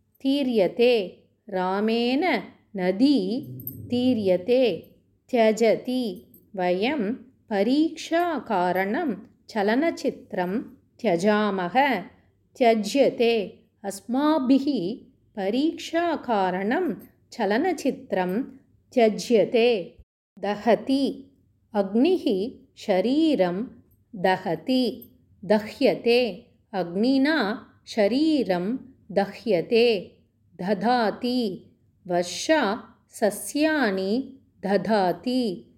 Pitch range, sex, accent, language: 190-255 Hz, female, native, Tamil